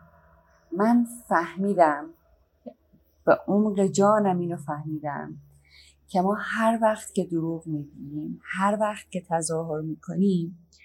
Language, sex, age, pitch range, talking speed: Persian, female, 30-49, 155-200 Hz, 105 wpm